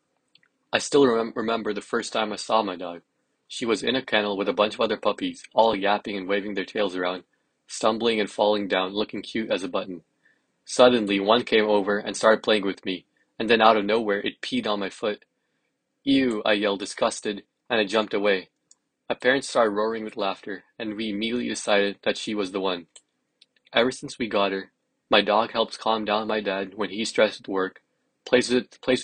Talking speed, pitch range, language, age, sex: 200 wpm, 100-115 Hz, English, 20-39, male